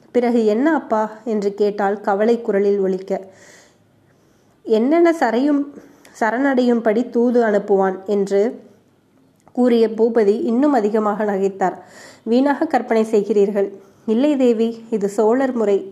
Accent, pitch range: native, 200-235 Hz